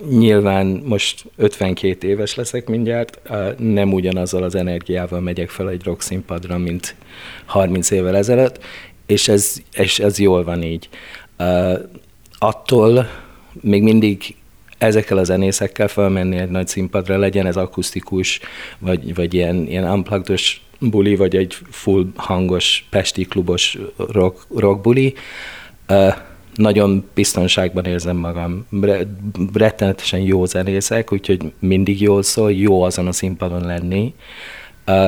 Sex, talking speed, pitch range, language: male, 120 wpm, 90-100 Hz, Hungarian